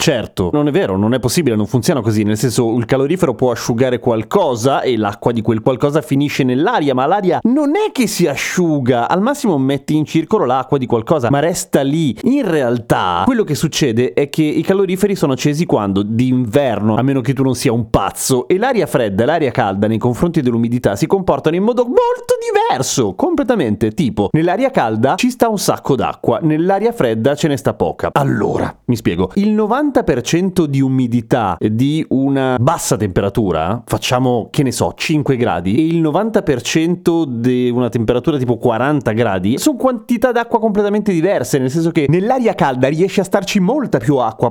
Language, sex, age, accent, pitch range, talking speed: Italian, male, 30-49, native, 120-185 Hz, 185 wpm